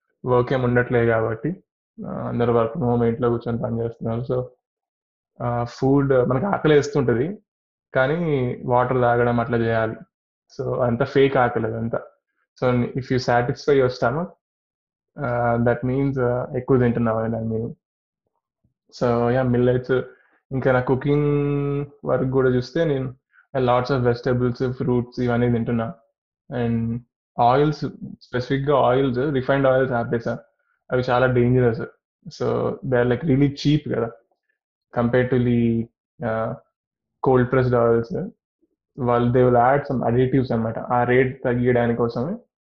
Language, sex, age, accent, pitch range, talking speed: Telugu, male, 20-39, native, 120-135 Hz, 120 wpm